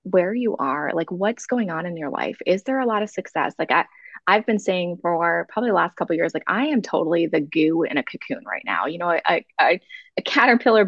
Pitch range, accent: 170-210 Hz, American